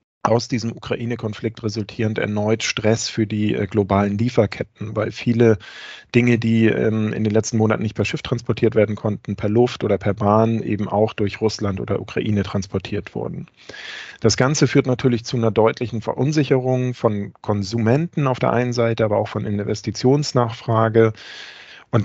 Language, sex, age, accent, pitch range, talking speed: German, male, 40-59, German, 110-125 Hz, 150 wpm